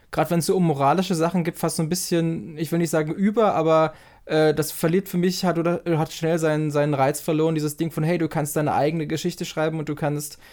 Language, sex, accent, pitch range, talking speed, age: German, male, German, 155-175 Hz, 250 wpm, 20-39